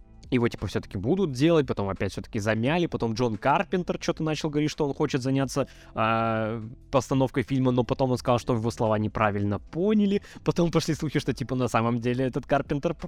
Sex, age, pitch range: male, 20-39, 110-150 Hz